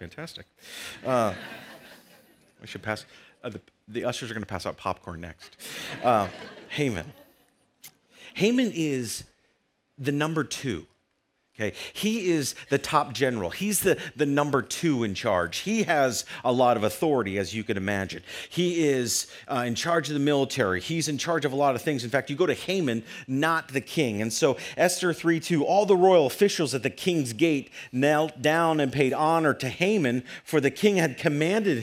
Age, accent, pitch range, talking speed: 40-59, American, 115-165 Hz, 175 wpm